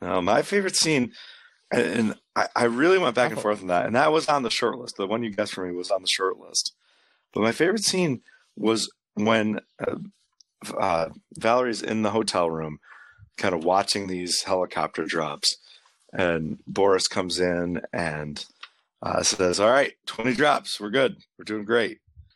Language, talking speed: English, 175 wpm